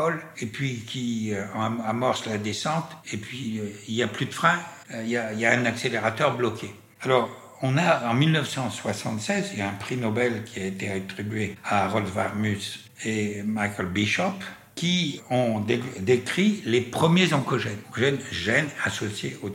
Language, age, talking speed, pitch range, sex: French, 60-79, 170 wpm, 105-130 Hz, male